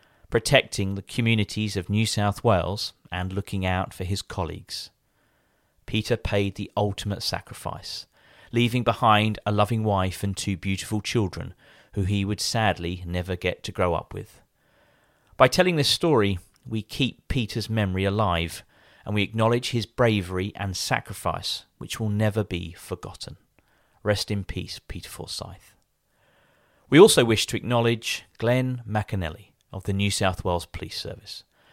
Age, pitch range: 40-59, 95-115 Hz